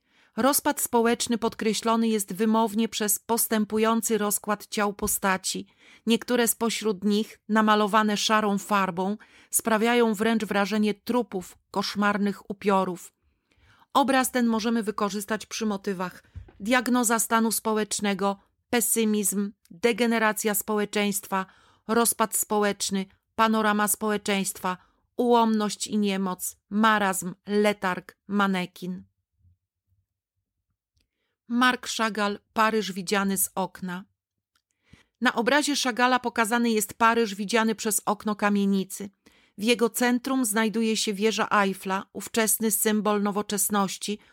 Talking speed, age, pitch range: 95 wpm, 40-59, 200-230 Hz